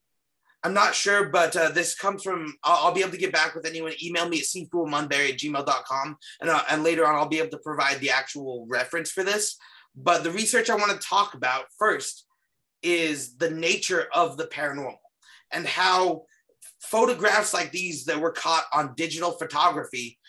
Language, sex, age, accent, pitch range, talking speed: English, male, 30-49, American, 160-200 Hz, 185 wpm